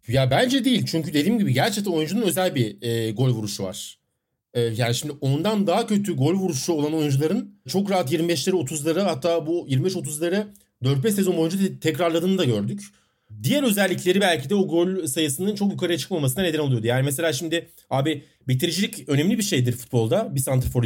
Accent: native